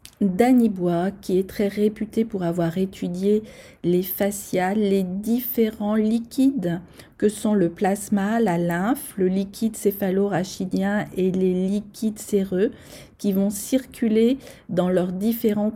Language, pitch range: French, 185-225 Hz